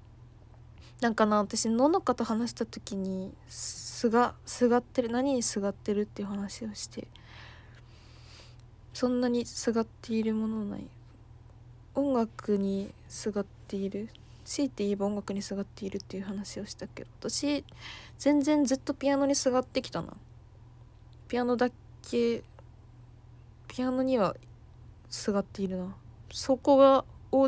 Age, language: 20-39, Japanese